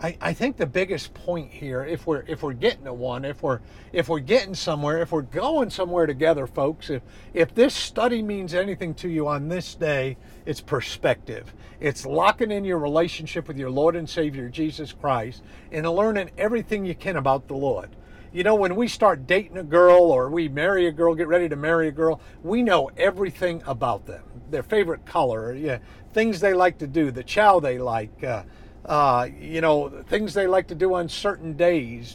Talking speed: 200 wpm